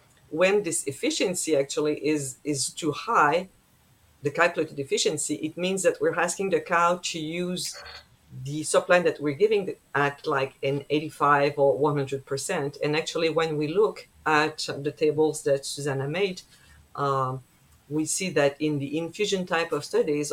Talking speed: 160 wpm